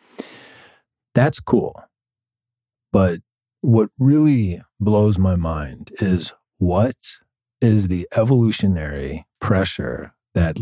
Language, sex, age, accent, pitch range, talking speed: English, male, 40-59, American, 85-110 Hz, 85 wpm